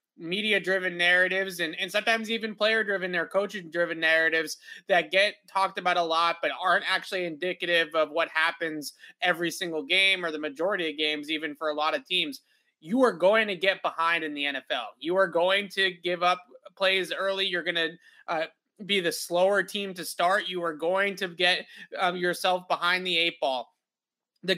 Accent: American